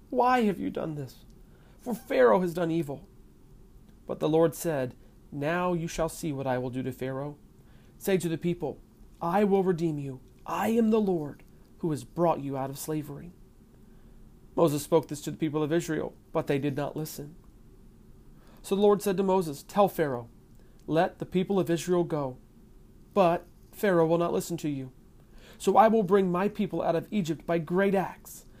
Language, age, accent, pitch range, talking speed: English, 40-59, American, 150-185 Hz, 185 wpm